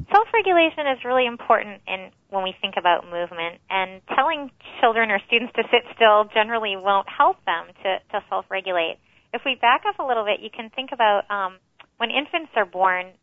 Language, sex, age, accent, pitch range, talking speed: English, female, 30-49, American, 175-225 Hz, 185 wpm